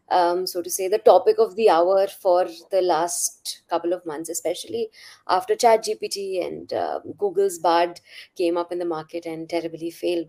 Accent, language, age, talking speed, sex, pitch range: Indian, English, 20-39, 180 wpm, female, 185-275 Hz